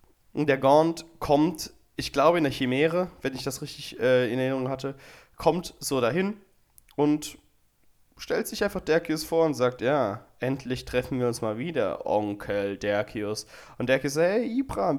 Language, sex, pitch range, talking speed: German, male, 110-150 Hz, 170 wpm